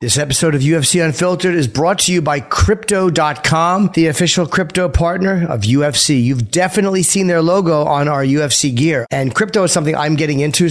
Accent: American